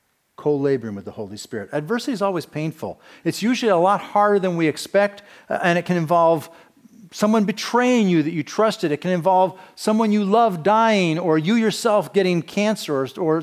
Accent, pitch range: American, 140-210 Hz